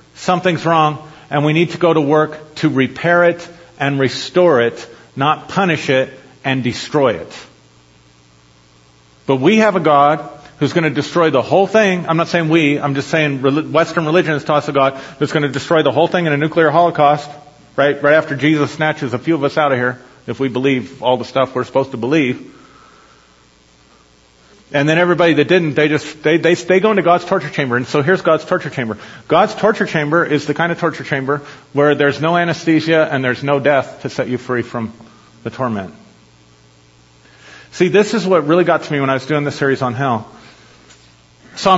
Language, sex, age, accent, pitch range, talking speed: English, male, 40-59, American, 125-160 Hz, 205 wpm